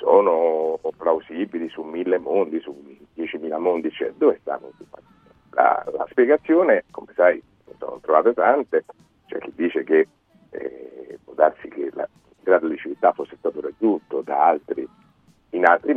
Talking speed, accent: 150 wpm, native